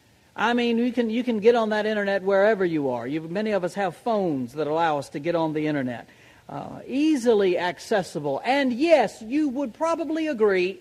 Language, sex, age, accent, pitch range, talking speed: English, male, 60-79, American, 155-220 Hz, 200 wpm